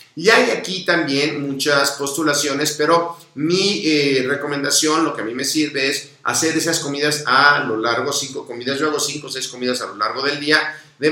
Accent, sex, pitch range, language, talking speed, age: Mexican, male, 130-155 Hz, Spanish, 200 wpm, 50-69